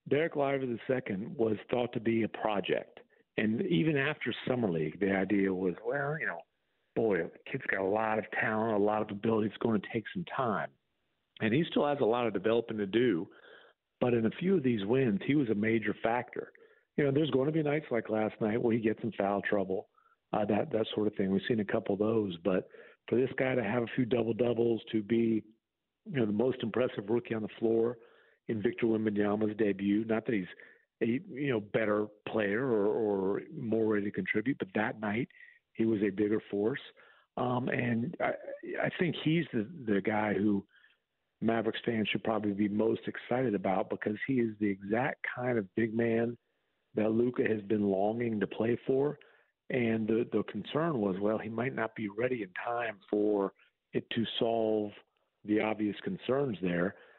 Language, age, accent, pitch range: English, 50-69, American, 105-125 Hz